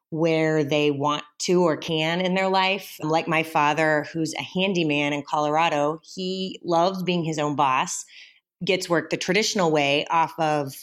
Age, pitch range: 30-49, 155-200 Hz